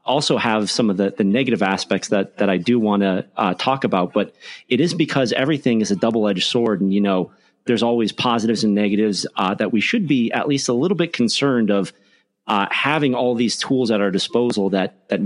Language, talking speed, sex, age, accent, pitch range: English, 225 wpm, male, 40-59, American, 95-120 Hz